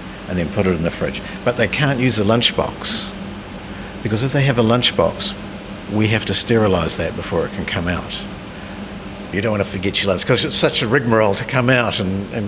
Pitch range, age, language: 95-115 Hz, 60-79, English